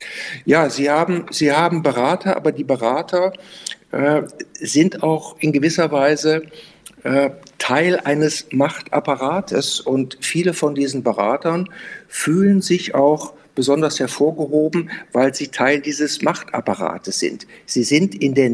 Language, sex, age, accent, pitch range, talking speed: German, male, 50-69, German, 120-155 Hz, 125 wpm